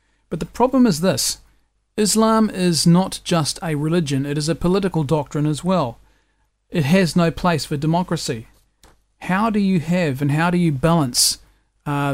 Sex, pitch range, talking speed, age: male, 140-165 Hz, 170 wpm, 40-59